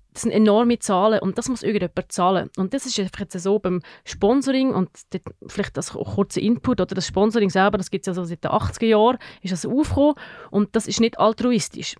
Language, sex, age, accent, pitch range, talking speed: German, female, 30-49, Swiss, 190-225 Hz, 210 wpm